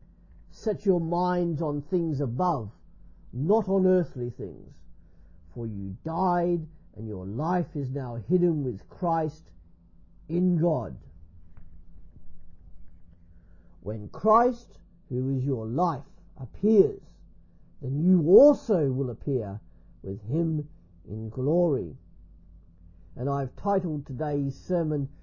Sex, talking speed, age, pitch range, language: male, 105 wpm, 50-69, 120-180 Hz, English